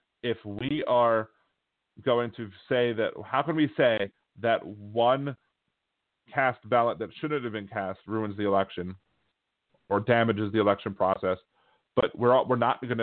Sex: male